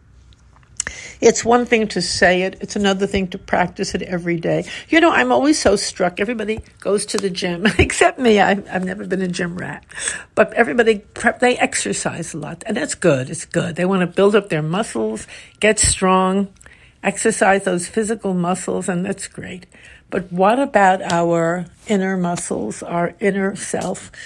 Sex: female